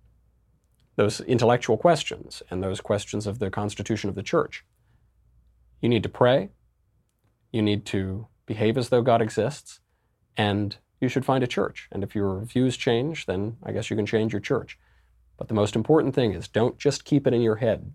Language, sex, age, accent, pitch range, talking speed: English, male, 40-59, American, 95-115 Hz, 185 wpm